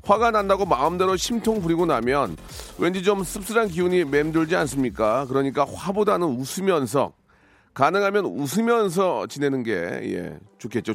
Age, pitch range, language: 40-59, 120-195 Hz, Korean